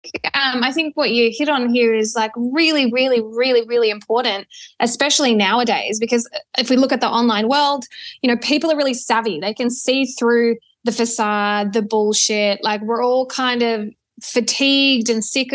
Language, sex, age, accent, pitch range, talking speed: English, female, 20-39, Australian, 215-255 Hz, 180 wpm